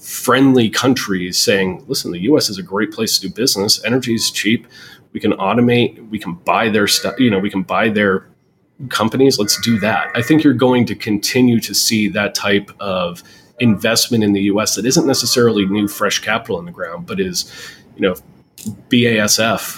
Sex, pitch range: male, 100-120 Hz